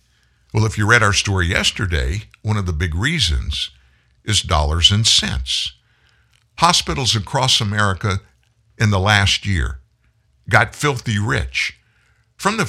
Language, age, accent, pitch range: English, 60-79, American, 85-120 Hz